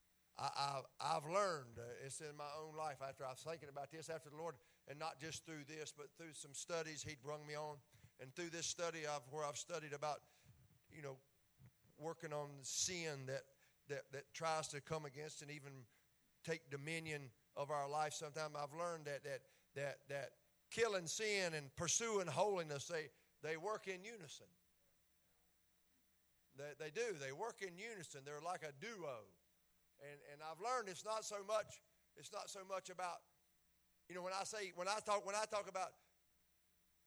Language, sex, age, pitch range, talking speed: English, male, 50-69, 140-175 Hz, 185 wpm